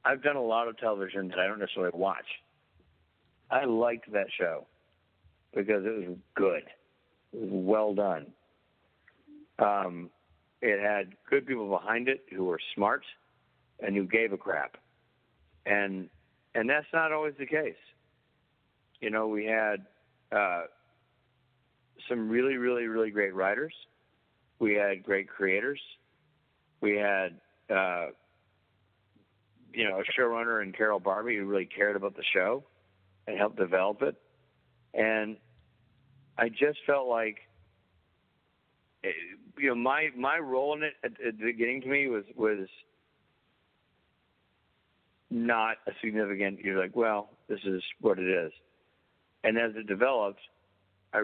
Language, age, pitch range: English, 60-79, 100-125 Hz